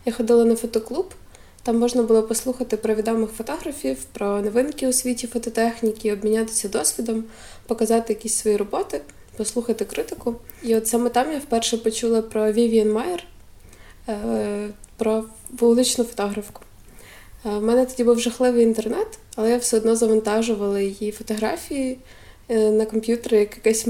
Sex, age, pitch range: female, 20-39, 210-235 Hz